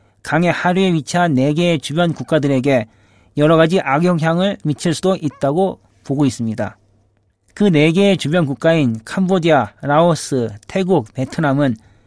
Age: 40-59